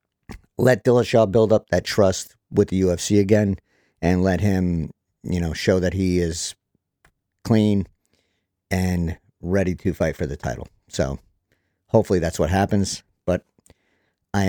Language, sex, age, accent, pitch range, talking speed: English, male, 50-69, American, 90-105 Hz, 140 wpm